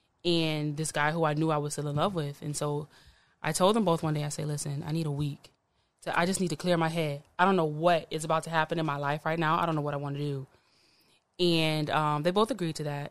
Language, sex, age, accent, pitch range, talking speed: English, female, 20-39, American, 150-170 Hz, 290 wpm